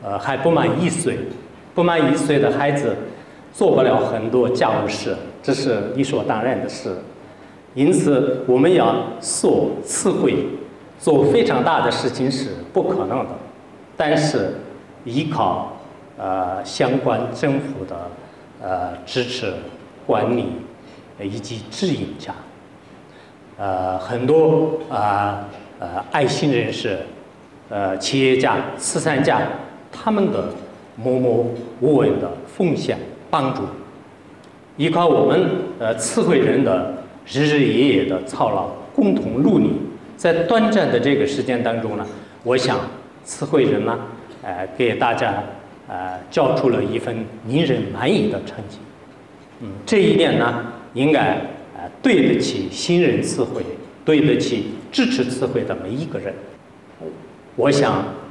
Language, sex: English, male